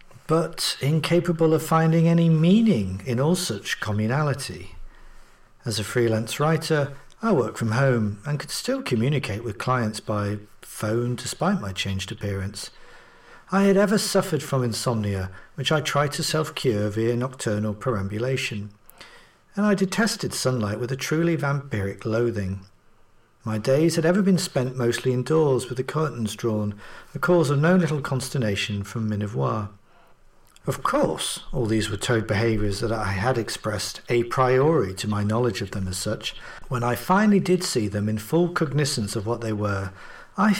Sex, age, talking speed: male, 50-69, 160 wpm